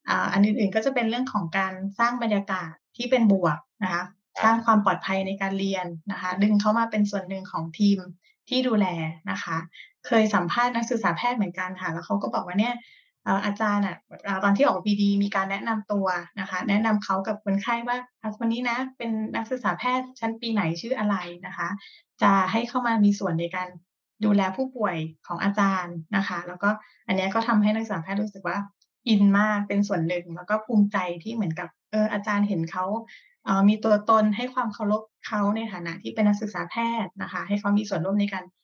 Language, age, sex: Thai, 20-39, female